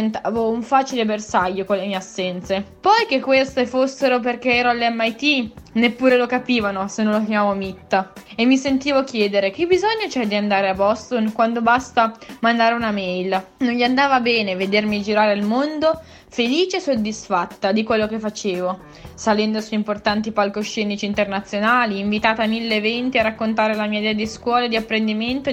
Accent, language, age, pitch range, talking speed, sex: native, Italian, 20-39, 205-250 Hz, 170 wpm, female